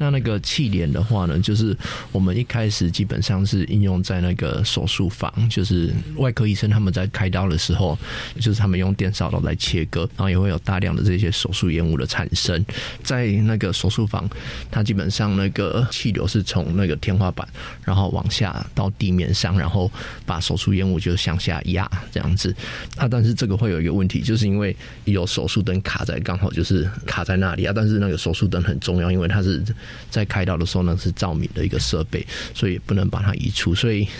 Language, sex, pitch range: Chinese, male, 90-110 Hz